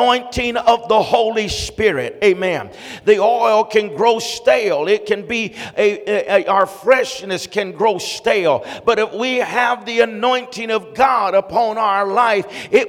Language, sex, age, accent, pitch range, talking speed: English, male, 50-69, American, 200-245 Hz, 145 wpm